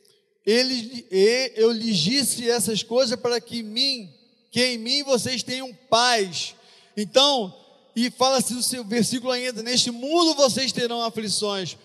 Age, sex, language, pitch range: 40-59, male, Portuguese, 225-270 Hz